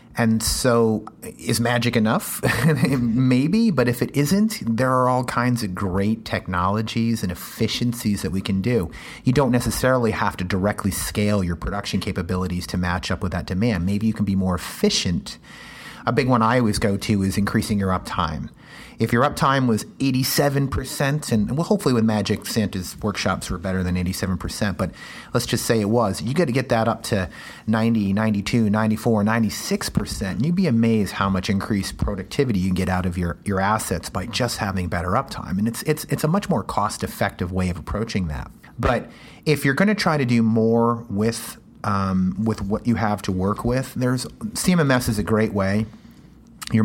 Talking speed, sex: 190 wpm, male